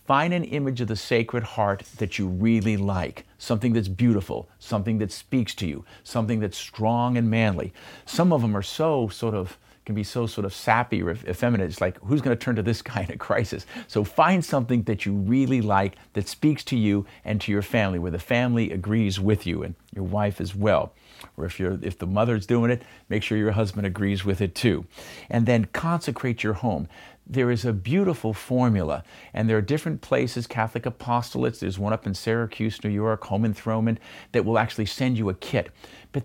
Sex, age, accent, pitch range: male, 50-69, American, 100-125 Hz